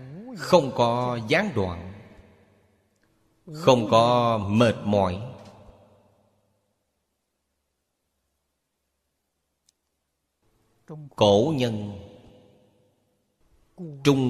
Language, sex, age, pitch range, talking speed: Vietnamese, male, 30-49, 100-120 Hz, 45 wpm